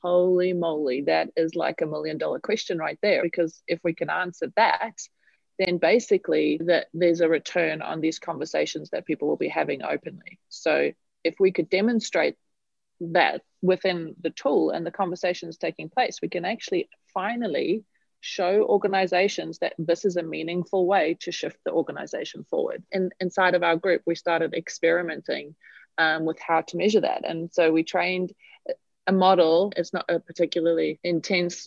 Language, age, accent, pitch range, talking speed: English, 30-49, Australian, 165-190 Hz, 165 wpm